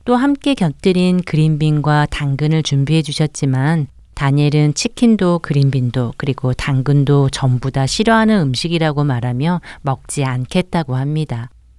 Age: 40-59